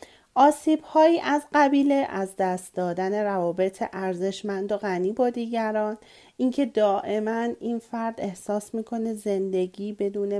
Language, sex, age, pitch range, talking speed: Persian, female, 40-59, 190-270 Hz, 115 wpm